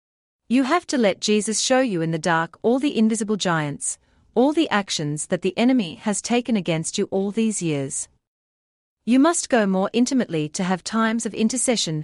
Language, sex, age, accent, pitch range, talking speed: French, female, 40-59, Australian, 165-240 Hz, 185 wpm